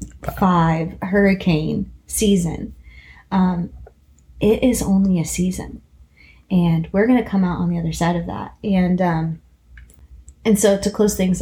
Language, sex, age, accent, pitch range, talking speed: English, female, 20-39, American, 165-195 Hz, 145 wpm